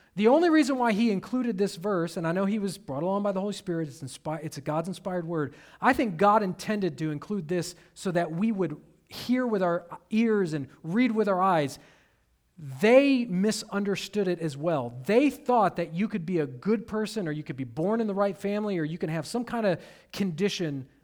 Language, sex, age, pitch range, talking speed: English, male, 40-59, 160-215 Hz, 215 wpm